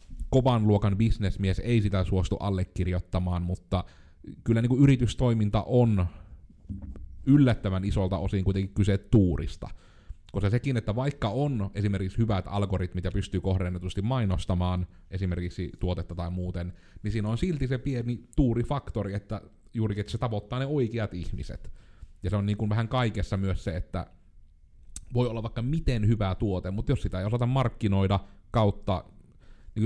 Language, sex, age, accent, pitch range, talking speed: Finnish, male, 30-49, native, 90-110 Hz, 145 wpm